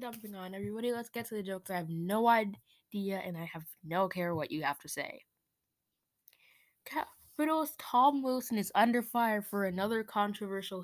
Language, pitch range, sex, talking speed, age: English, 155-210 Hz, female, 170 wpm, 10-29